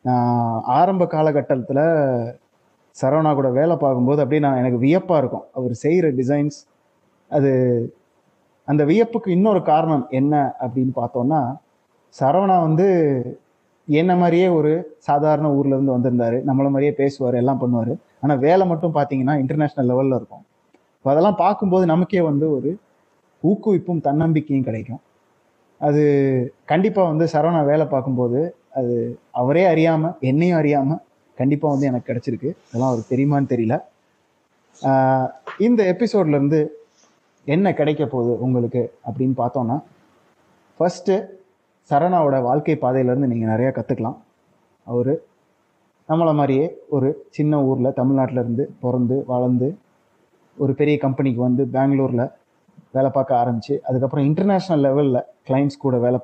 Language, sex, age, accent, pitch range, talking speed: Tamil, male, 20-39, native, 130-155 Hz, 115 wpm